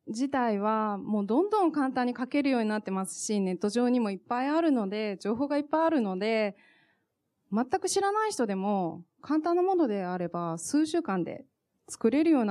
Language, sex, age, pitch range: Japanese, female, 20-39, 195-285 Hz